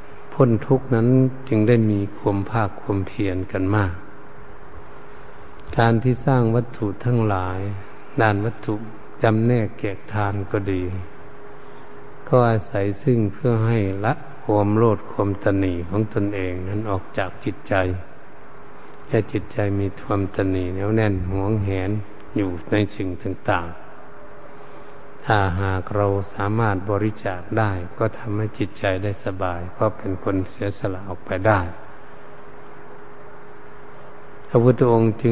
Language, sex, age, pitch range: Thai, male, 60-79, 95-110 Hz